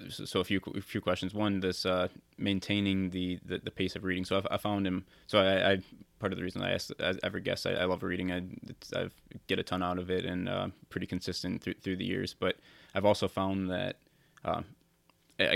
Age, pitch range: 20-39, 90-95 Hz